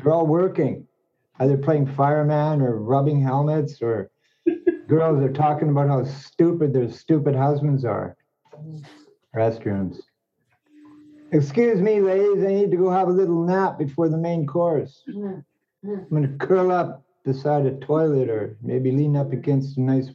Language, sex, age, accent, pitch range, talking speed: English, male, 60-79, American, 140-190 Hz, 150 wpm